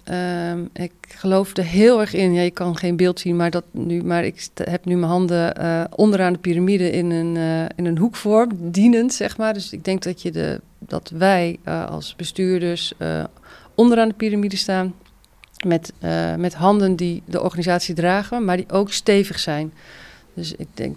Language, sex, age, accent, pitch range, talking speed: Dutch, female, 40-59, Dutch, 165-190 Hz, 170 wpm